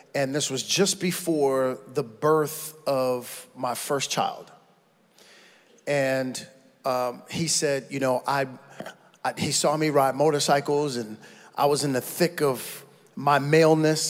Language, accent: English, American